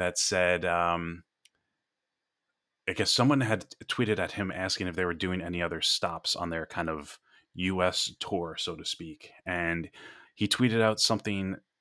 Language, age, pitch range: English, 30-49, 85-100 Hz